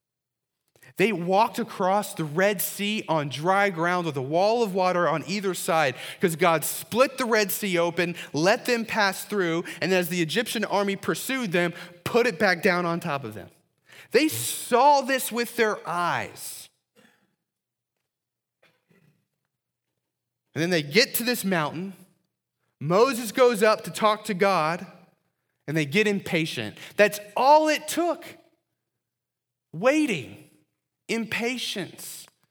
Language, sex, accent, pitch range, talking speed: English, male, American, 160-235 Hz, 135 wpm